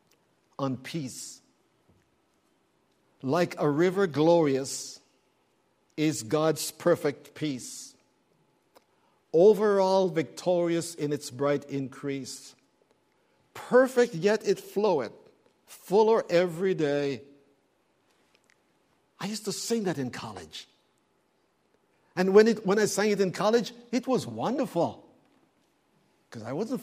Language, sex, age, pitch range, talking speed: English, male, 60-79, 145-215 Hz, 100 wpm